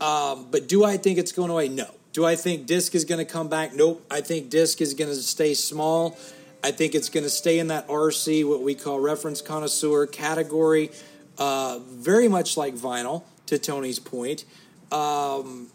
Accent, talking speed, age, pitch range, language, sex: American, 195 wpm, 30-49, 145-180 Hz, English, male